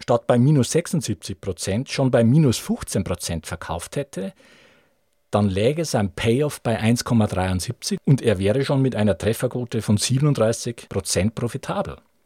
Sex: male